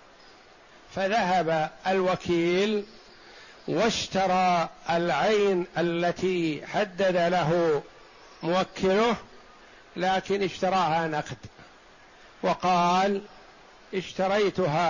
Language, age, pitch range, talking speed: Arabic, 60-79, 170-205 Hz, 50 wpm